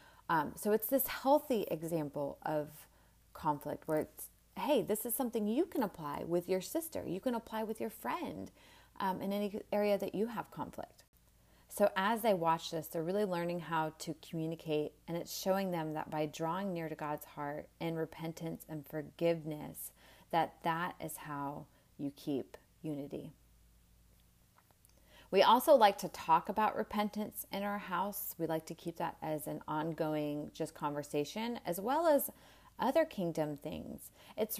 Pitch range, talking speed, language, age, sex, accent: 155-205 Hz, 165 wpm, English, 30-49, female, American